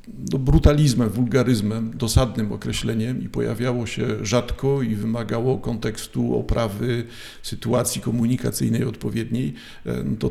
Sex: male